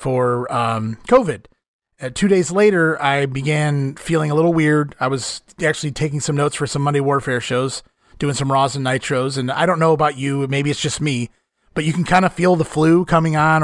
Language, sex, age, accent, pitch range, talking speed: English, male, 30-49, American, 135-165 Hz, 210 wpm